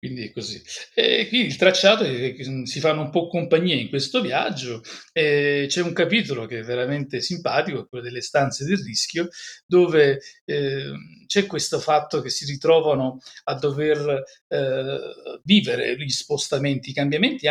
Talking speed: 160 wpm